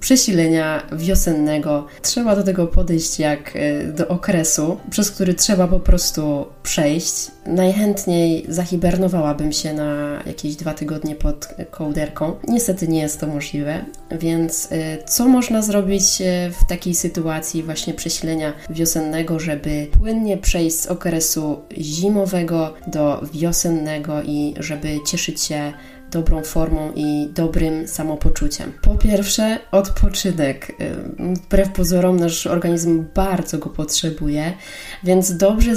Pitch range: 155-185 Hz